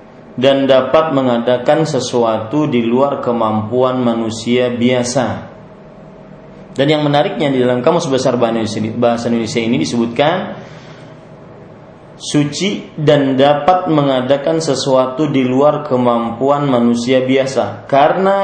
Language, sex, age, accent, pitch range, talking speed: English, male, 30-49, Indonesian, 120-150 Hz, 100 wpm